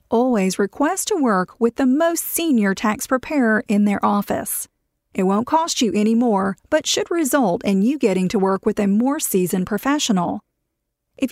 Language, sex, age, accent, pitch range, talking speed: English, female, 40-59, American, 205-275 Hz, 175 wpm